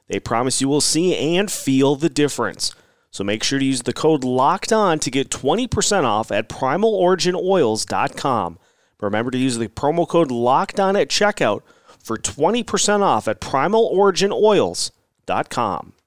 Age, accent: 30-49, American